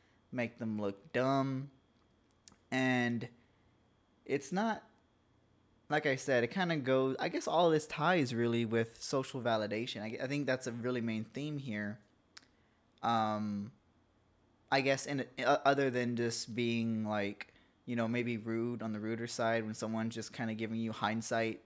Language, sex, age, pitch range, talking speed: English, male, 20-39, 110-130 Hz, 165 wpm